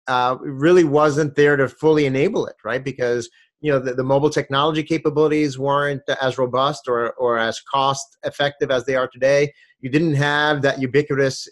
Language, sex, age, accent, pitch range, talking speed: English, male, 30-49, American, 130-150 Hz, 175 wpm